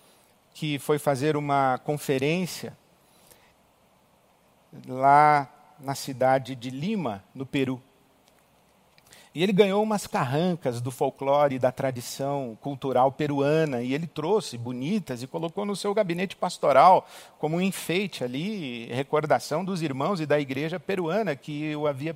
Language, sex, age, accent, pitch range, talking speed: Portuguese, male, 50-69, Brazilian, 140-180 Hz, 130 wpm